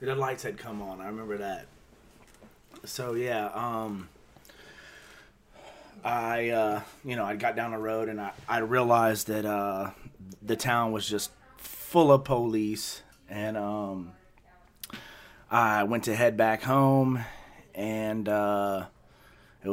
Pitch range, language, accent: 100-120 Hz, English, American